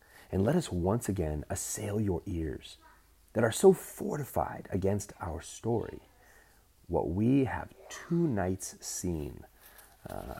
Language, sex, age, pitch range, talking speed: English, male, 30-49, 80-110 Hz, 125 wpm